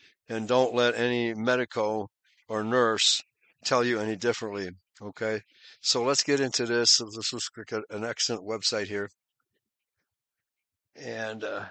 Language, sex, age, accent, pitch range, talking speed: English, male, 60-79, American, 115-150 Hz, 125 wpm